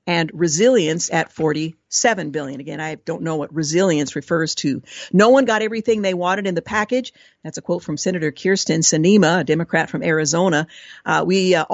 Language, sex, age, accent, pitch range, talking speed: English, female, 50-69, American, 165-215 Hz, 185 wpm